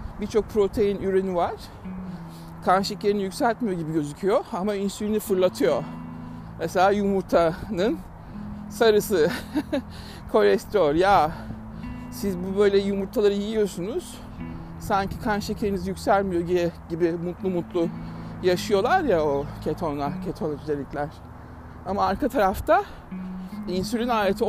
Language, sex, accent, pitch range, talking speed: Turkish, male, native, 140-205 Hz, 100 wpm